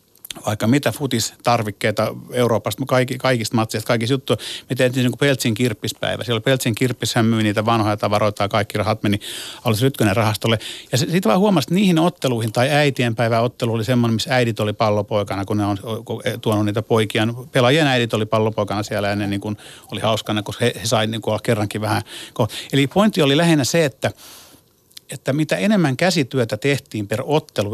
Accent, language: native, Finnish